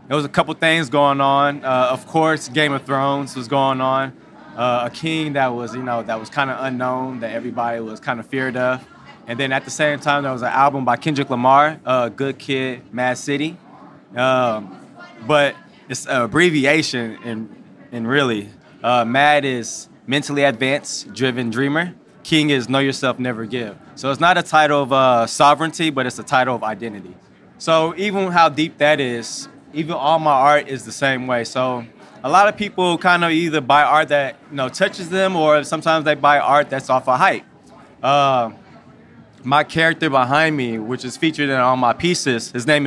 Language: English